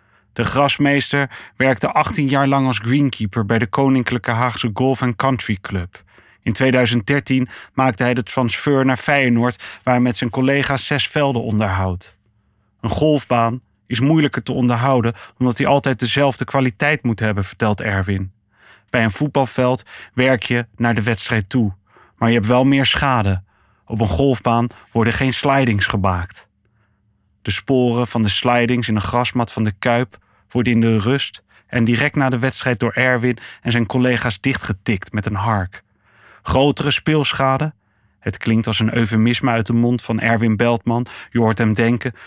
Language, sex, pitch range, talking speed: Dutch, male, 110-130 Hz, 165 wpm